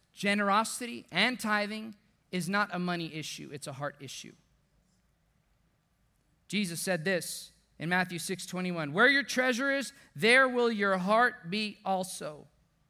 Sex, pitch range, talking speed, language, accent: male, 145-210 Hz, 135 wpm, English, American